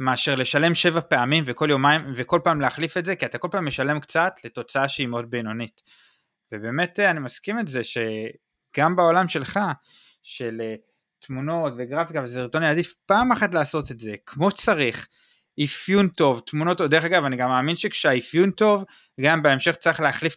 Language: Hebrew